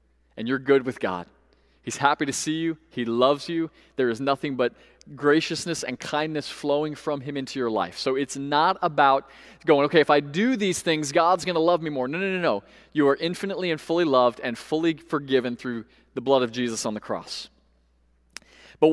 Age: 30-49